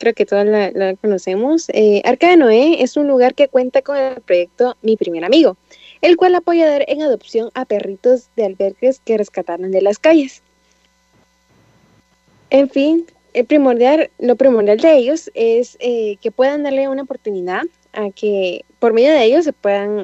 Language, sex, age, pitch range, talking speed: Spanish, female, 20-39, 205-285 Hz, 180 wpm